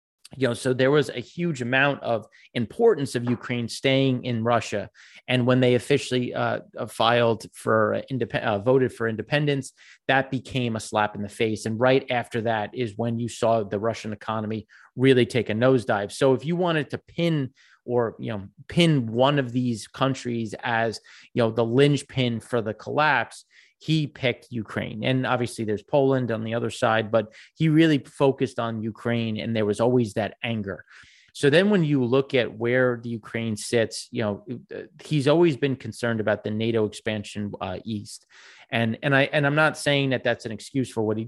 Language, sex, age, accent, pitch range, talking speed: English, male, 30-49, American, 115-135 Hz, 190 wpm